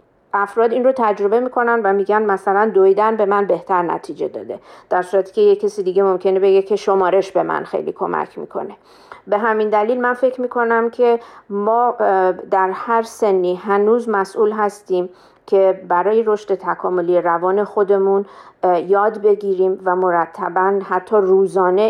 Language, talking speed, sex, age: Persian, 150 wpm, female, 40-59